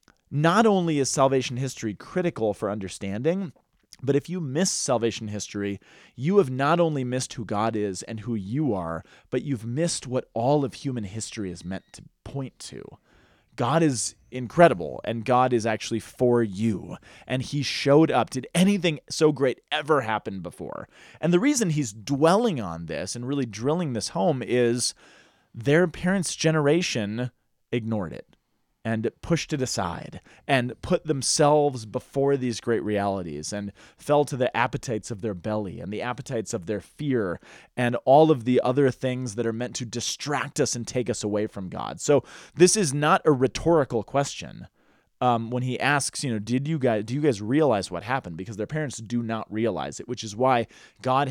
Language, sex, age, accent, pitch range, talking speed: English, male, 30-49, American, 110-145 Hz, 180 wpm